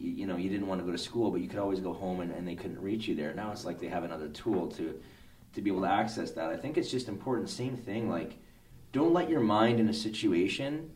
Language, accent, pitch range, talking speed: English, American, 90-115 Hz, 280 wpm